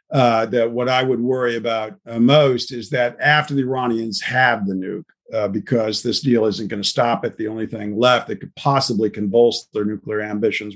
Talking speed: 205 wpm